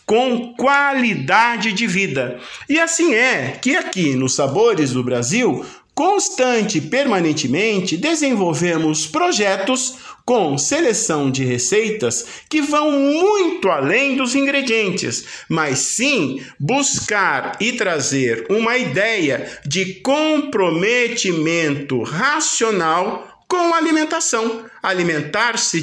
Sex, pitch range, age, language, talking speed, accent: male, 170-275 Hz, 50-69, Portuguese, 95 wpm, Brazilian